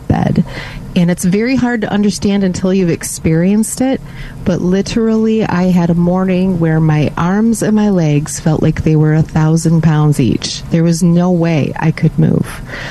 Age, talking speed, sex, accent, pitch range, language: 30-49, 175 wpm, female, American, 155-190 Hz, English